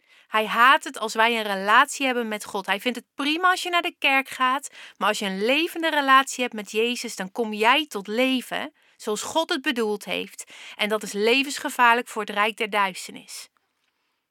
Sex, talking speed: female, 200 wpm